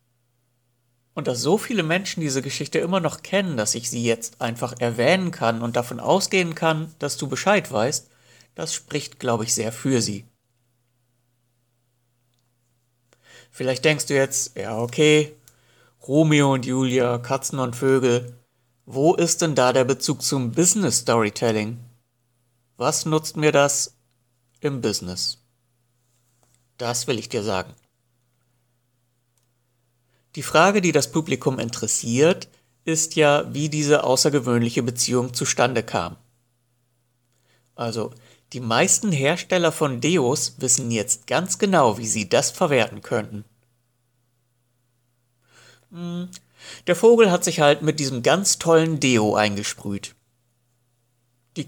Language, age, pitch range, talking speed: German, 60-79, 120-150 Hz, 120 wpm